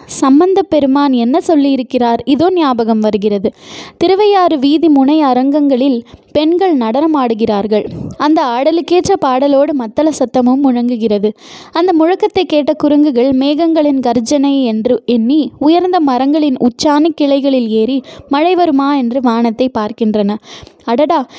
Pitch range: 255-320 Hz